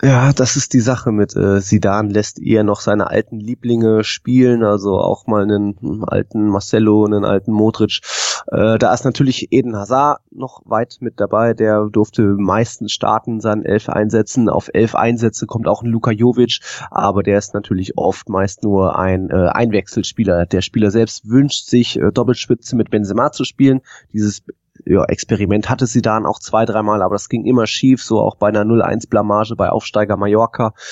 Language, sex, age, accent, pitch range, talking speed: German, male, 20-39, German, 105-115 Hz, 180 wpm